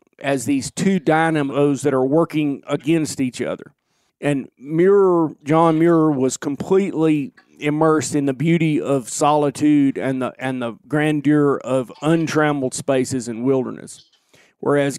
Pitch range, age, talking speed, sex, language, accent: 130-155 Hz, 40-59, 130 wpm, male, English, American